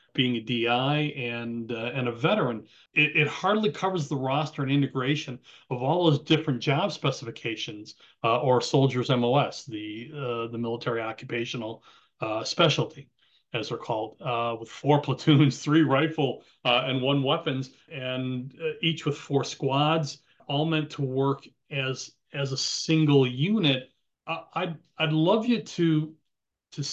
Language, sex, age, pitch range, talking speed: English, male, 40-59, 130-155 Hz, 150 wpm